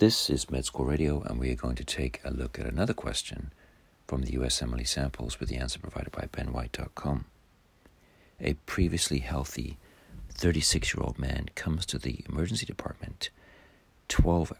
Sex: male